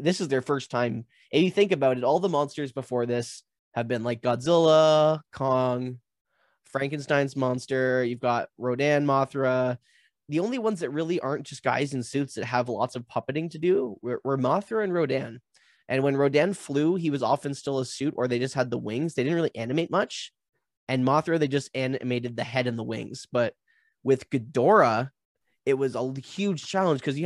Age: 20-39